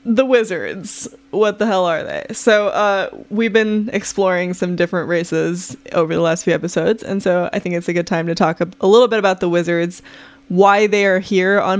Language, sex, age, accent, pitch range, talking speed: English, female, 20-39, American, 175-215 Hz, 210 wpm